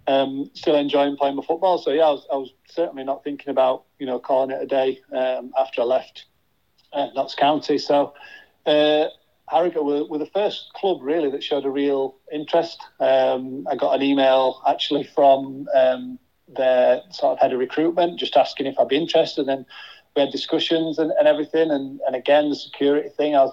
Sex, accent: male, British